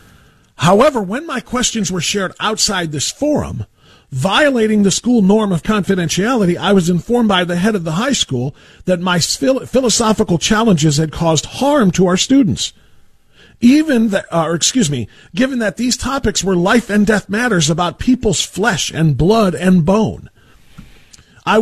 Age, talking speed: 50-69, 160 wpm